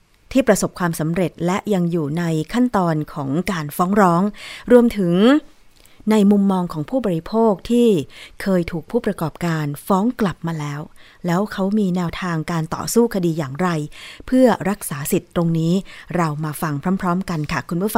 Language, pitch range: Thai, 165-210 Hz